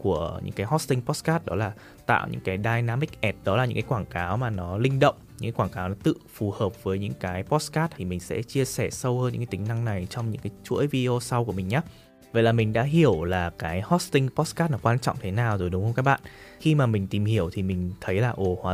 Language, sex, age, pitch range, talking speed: Vietnamese, male, 20-39, 100-140 Hz, 270 wpm